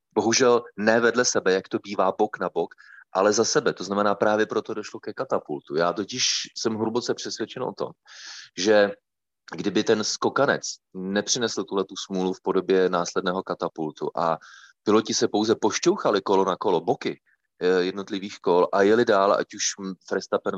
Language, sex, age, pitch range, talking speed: Czech, male, 30-49, 85-95 Hz, 160 wpm